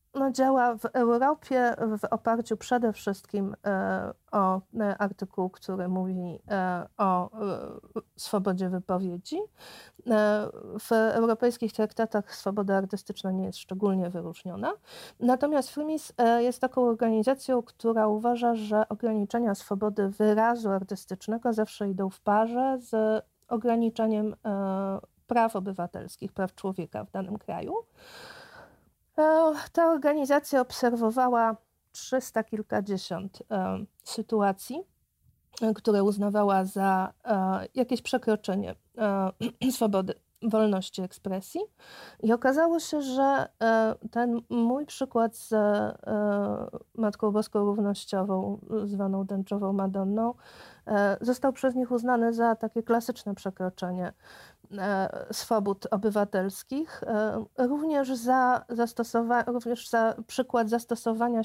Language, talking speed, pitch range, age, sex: Polish, 90 wpm, 195-240 Hz, 50-69, female